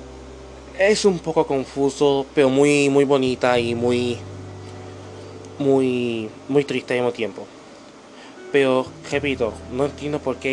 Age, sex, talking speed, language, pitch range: 20-39, male, 125 wpm, Spanish, 115-160 Hz